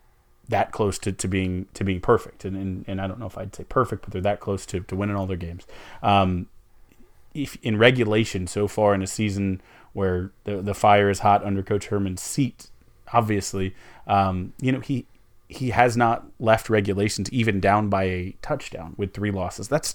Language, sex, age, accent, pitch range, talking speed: English, male, 30-49, American, 95-110 Hz, 200 wpm